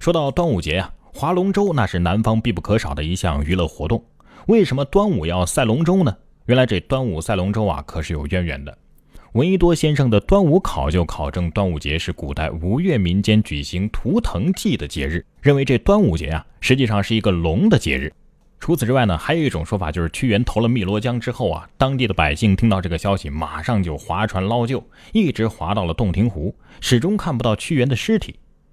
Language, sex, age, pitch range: Chinese, male, 30-49, 85-130 Hz